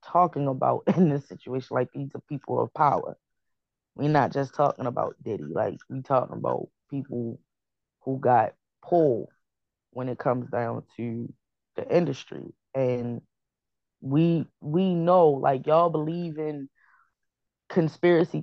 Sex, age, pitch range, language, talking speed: female, 10-29, 125-150 Hz, English, 135 wpm